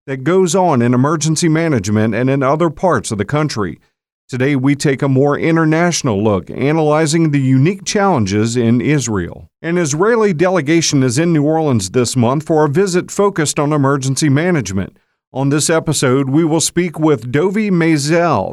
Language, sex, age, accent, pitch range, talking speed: English, male, 50-69, American, 125-165 Hz, 165 wpm